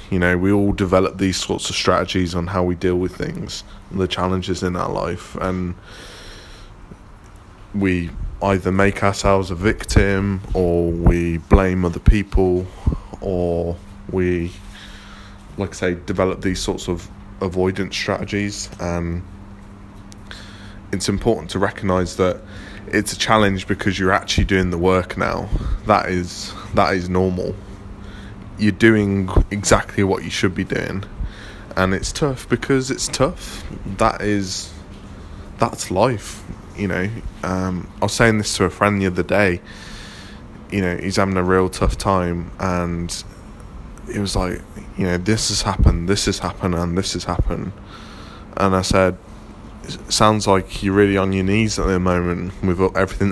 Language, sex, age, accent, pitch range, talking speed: English, male, 20-39, British, 90-100 Hz, 150 wpm